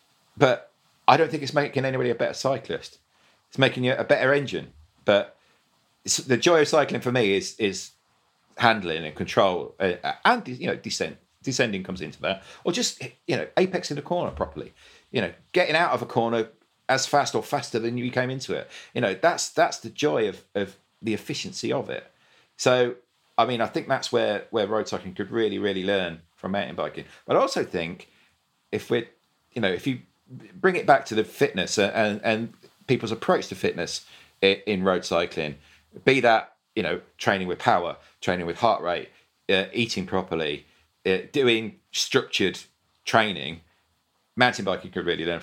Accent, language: British, English